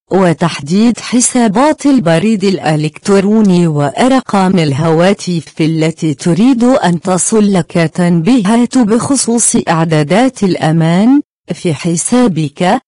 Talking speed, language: 85 wpm, Arabic